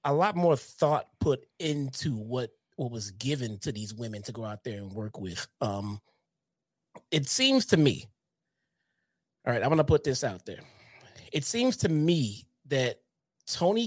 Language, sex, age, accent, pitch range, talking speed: English, male, 30-49, American, 125-155 Hz, 175 wpm